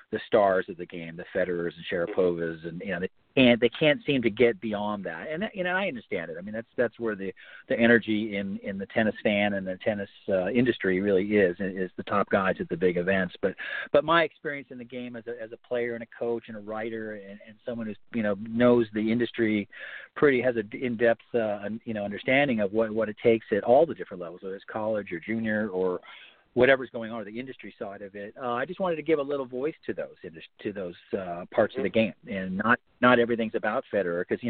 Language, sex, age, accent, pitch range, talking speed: English, male, 40-59, American, 105-130 Hz, 245 wpm